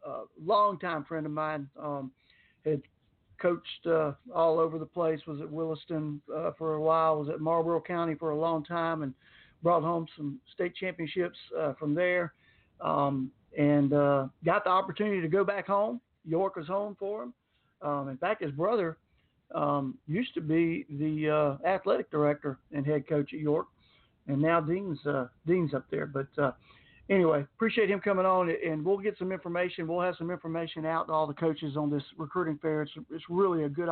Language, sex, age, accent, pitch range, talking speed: English, male, 50-69, American, 145-170 Hz, 190 wpm